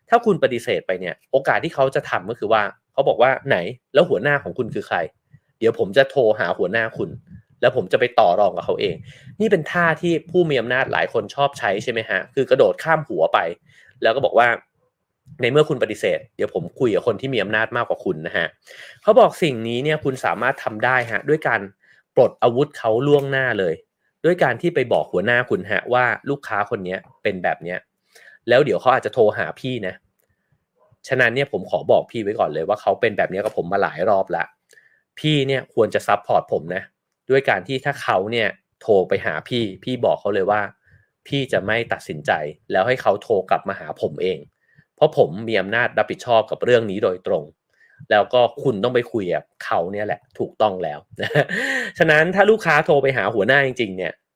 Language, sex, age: English, male, 30-49